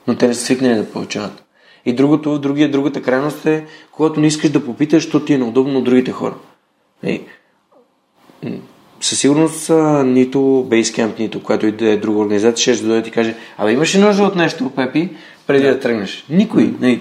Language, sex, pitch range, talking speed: Bulgarian, male, 115-150 Hz, 205 wpm